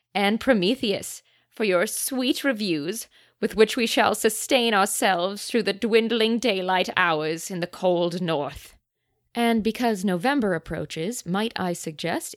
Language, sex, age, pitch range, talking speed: English, female, 20-39, 165-210 Hz, 135 wpm